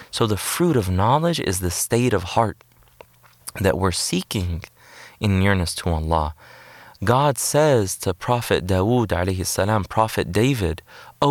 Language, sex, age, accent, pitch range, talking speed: English, male, 30-49, American, 90-115 Hz, 140 wpm